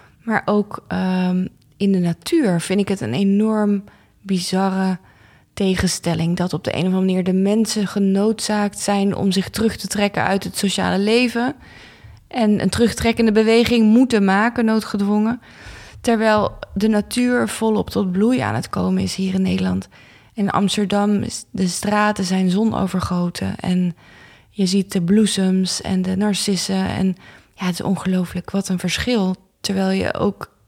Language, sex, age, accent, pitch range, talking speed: Dutch, female, 20-39, Dutch, 185-210 Hz, 155 wpm